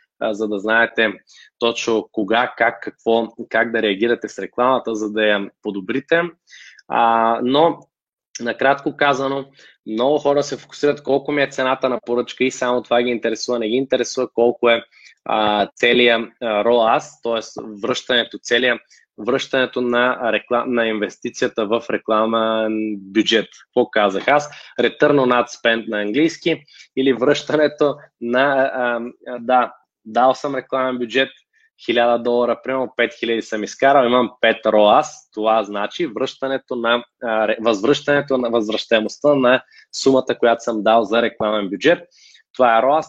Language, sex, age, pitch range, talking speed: Bulgarian, male, 20-39, 115-140 Hz, 140 wpm